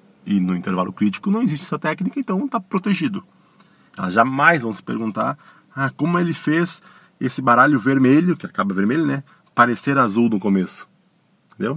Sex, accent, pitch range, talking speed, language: male, Brazilian, 110-175 Hz, 165 wpm, Portuguese